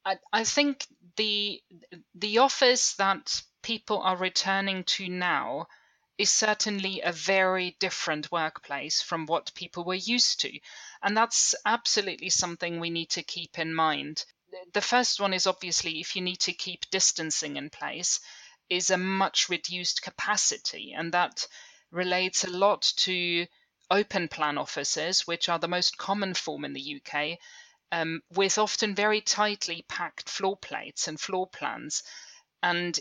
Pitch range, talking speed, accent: 175-205 Hz, 145 wpm, British